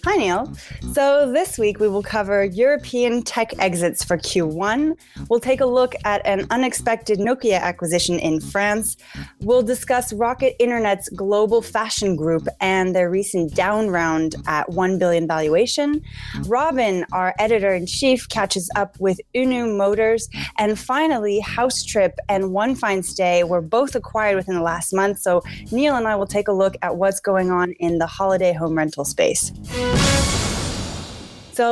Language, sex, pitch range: English, female, 180-235 Hz